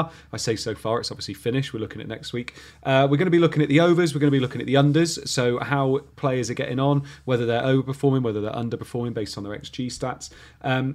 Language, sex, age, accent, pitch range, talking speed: English, male, 30-49, British, 115-145 Hz, 260 wpm